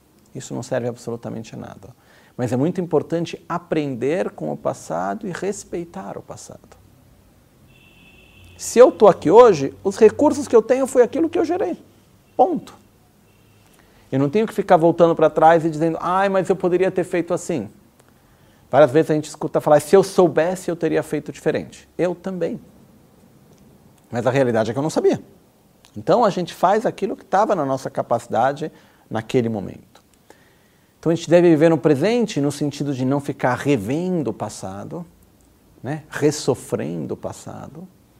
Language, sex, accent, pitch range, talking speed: Italian, male, Brazilian, 130-180 Hz, 165 wpm